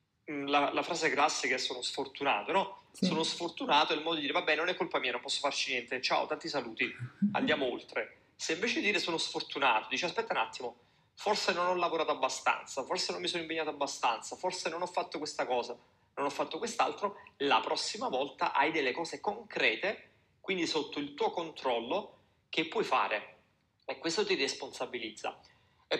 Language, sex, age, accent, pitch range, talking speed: Italian, male, 30-49, native, 130-170 Hz, 180 wpm